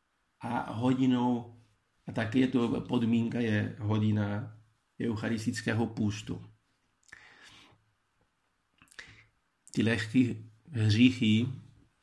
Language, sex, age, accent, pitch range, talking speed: Czech, male, 50-69, native, 105-130 Hz, 65 wpm